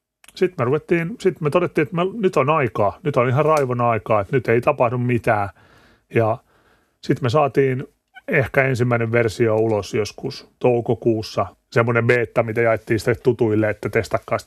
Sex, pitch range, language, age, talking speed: male, 110-135 Hz, Finnish, 30-49, 160 wpm